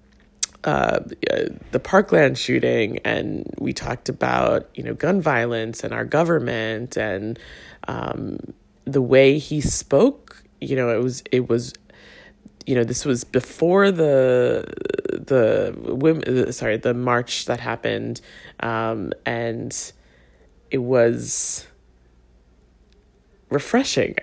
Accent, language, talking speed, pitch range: American, English, 110 wpm, 115-160 Hz